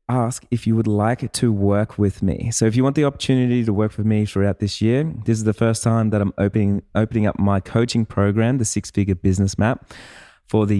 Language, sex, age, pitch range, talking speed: English, male, 20-39, 100-120 Hz, 235 wpm